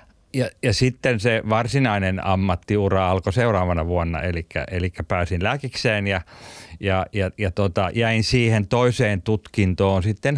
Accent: native